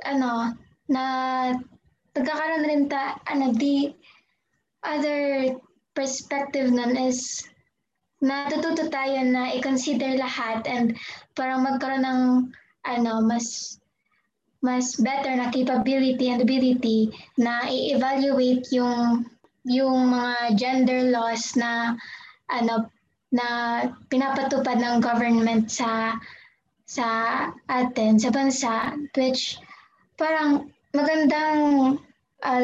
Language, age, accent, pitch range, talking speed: English, 20-39, Filipino, 240-275 Hz, 95 wpm